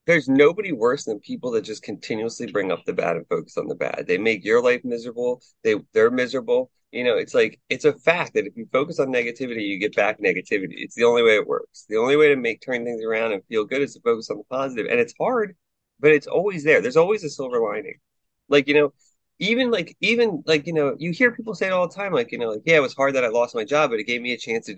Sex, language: male, English